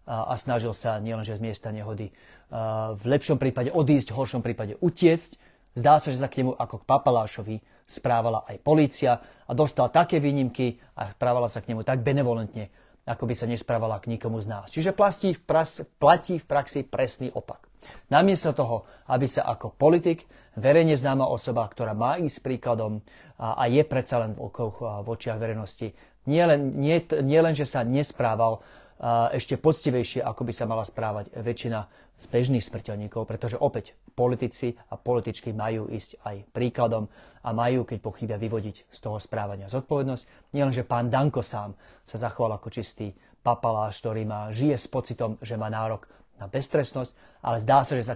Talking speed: 165 wpm